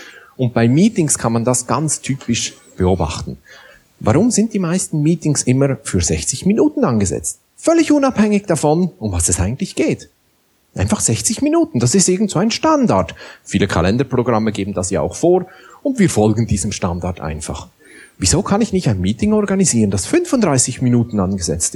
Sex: male